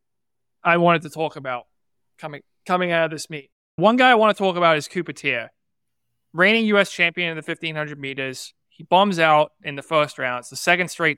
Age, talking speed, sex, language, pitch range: 30-49, 210 wpm, male, English, 140-180 Hz